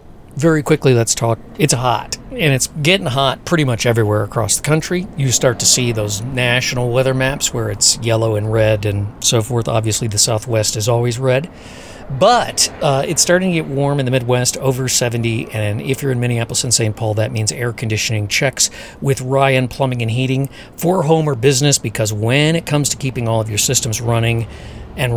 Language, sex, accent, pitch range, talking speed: English, male, American, 110-135 Hz, 200 wpm